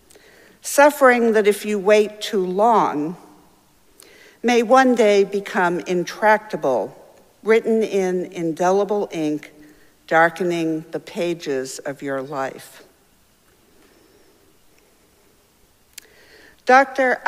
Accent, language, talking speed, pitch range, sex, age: American, English, 80 wpm, 165-235 Hz, female, 60-79